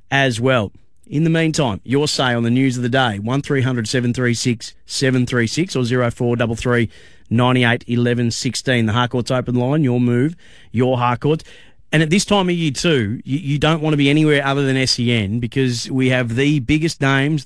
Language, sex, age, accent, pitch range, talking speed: English, male, 30-49, Australian, 120-140 Hz, 185 wpm